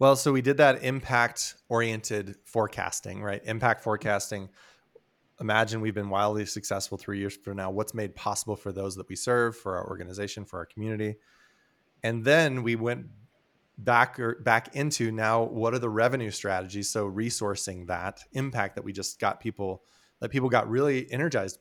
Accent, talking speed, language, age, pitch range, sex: American, 170 wpm, English, 20-39, 100-125 Hz, male